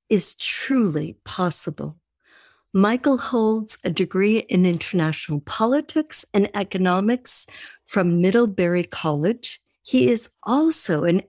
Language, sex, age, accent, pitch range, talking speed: English, female, 50-69, American, 175-245 Hz, 100 wpm